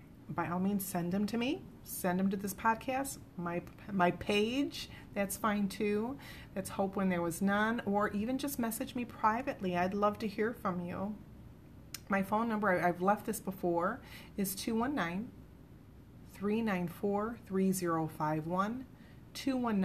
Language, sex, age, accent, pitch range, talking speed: English, female, 30-49, American, 175-210 Hz, 135 wpm